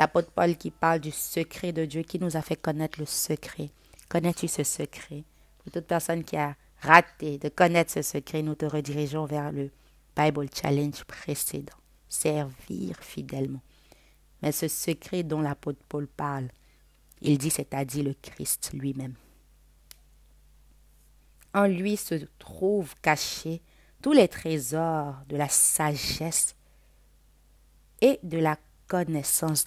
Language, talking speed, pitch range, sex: French, 135 wpm, 145-170 Hz, female